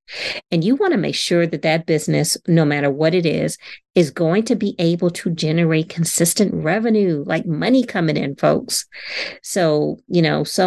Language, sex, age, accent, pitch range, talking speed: English, female, 40-59, American, 155-185 Hz, 180 wpm